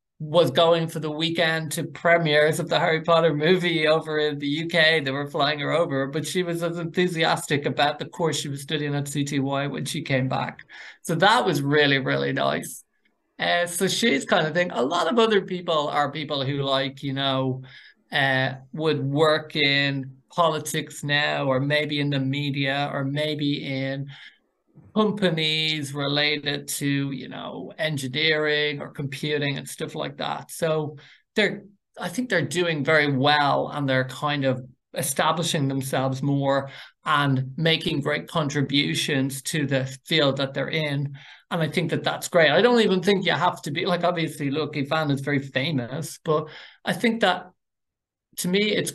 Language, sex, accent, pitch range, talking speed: English, male, Irish, 140-165 Hz, 170 wpm